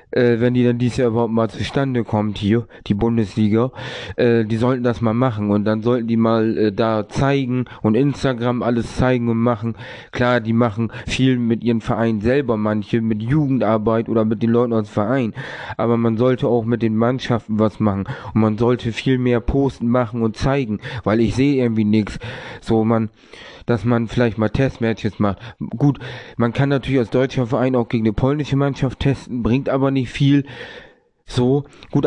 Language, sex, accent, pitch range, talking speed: German, male, German, 115-130 Hz, 190 wpm